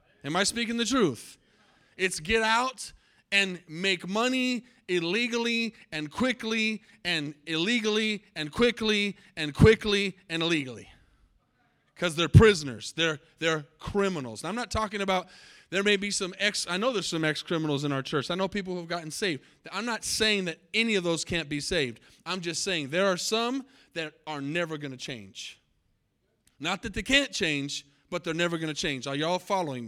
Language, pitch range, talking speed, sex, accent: English, 155-210 Hz, 180 wpm, male, American